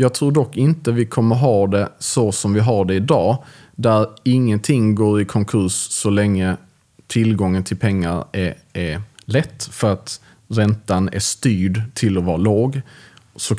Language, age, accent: Swedish, 30-49, Norwegian